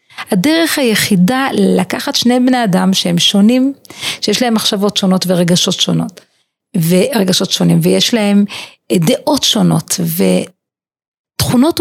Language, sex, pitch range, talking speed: Hebrew, female, 185-255 Hz, 105 wpm